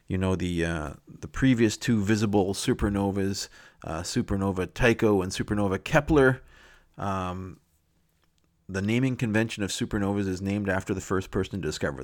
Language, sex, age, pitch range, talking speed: English, male, 30-49, 90-110 Hz, 145 wpm